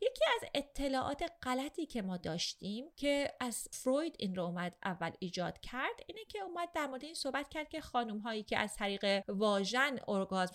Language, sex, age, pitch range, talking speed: Persian, female, 30-49, 180-245 Hz, 180 wpm